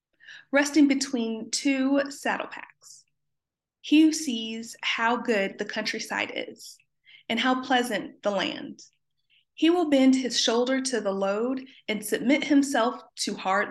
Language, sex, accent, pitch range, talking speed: English, female, American, 205-280 Hz, 130 wpm